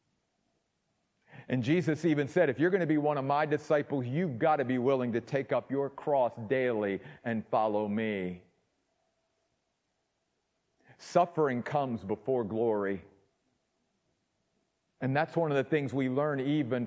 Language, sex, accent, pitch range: English, male, American, 120-205 Hz